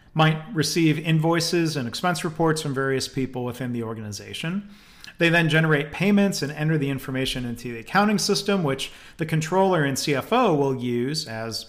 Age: 40-59